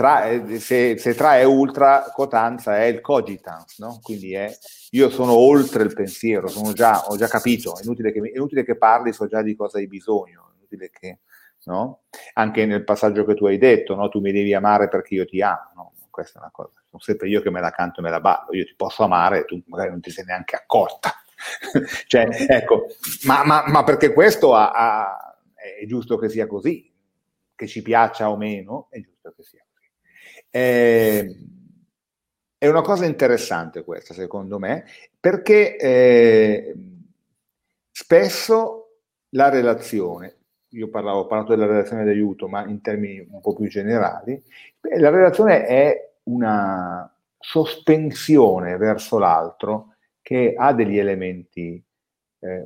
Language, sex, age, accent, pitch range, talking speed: Italian, male, 30-49, native, 105-135 Hz, 165 wpm